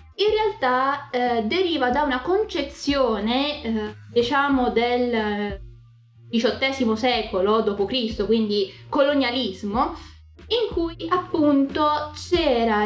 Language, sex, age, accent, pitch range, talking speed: Italian, female, 20-39, native, 220-290 Hz, 95 wpm